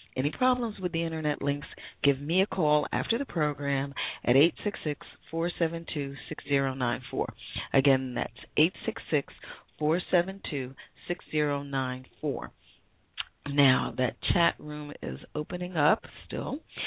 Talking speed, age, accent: 95 wpm, 40-59, American